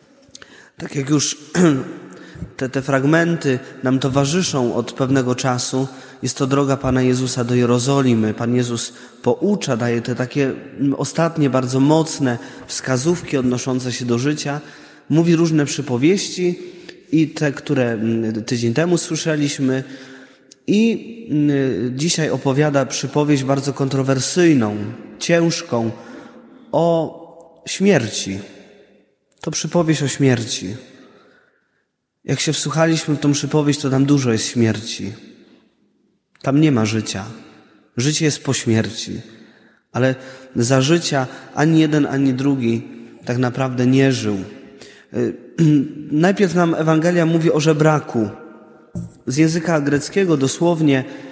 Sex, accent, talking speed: male, native, 110 wpm